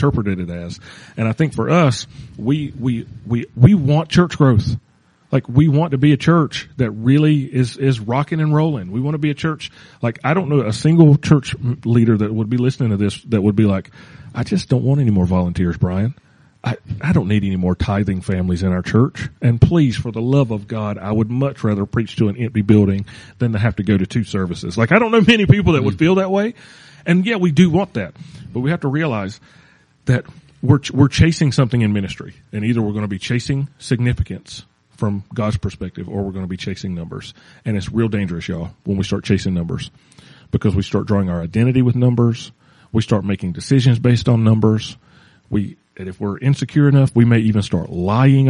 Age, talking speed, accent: 40-59, 225 wpm, American